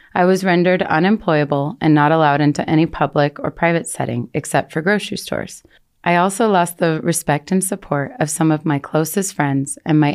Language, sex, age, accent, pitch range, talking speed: English, female, 30-49, American, 150-180 Hz, 190 wpm